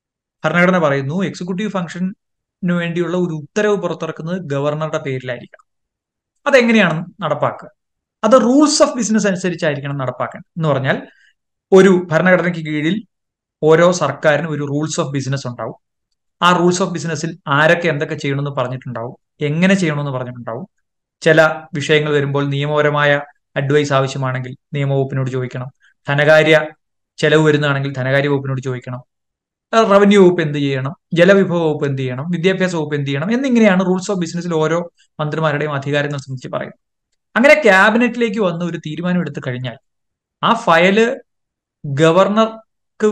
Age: 30-49